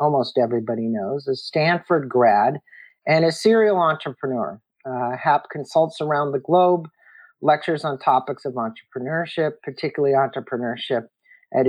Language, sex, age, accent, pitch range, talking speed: English, male, 50-69, American, 125-160 Hz, 125 wpm